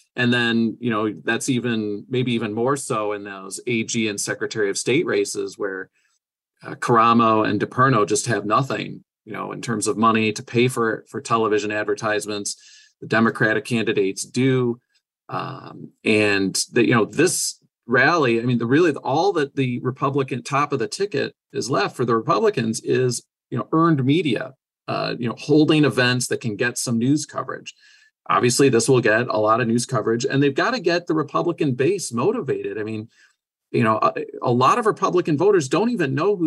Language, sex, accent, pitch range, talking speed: English, male, American, 115-145 Hz, 190 wpm